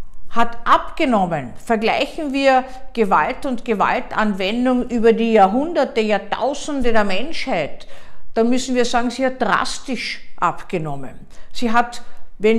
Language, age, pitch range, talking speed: German, 50-69, 200-265 Hz, 115 wpm